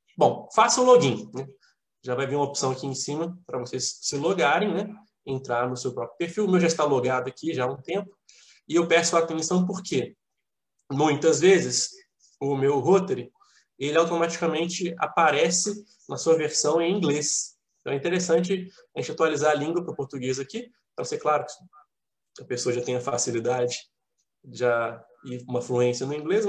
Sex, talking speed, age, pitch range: male, 180 wpm, 20-39, 135-195 Hz